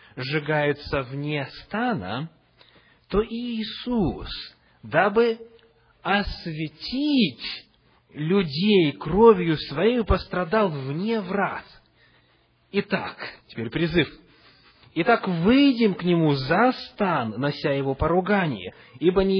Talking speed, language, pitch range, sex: 85 wpm, English, 145-220 Hz, male